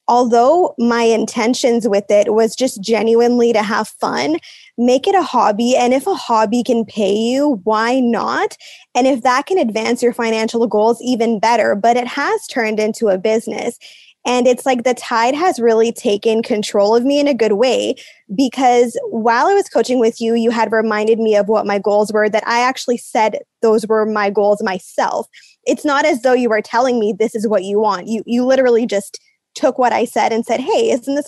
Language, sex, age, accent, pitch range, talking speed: English, female, 20-39, American, 220-255 Hz, 205 wpm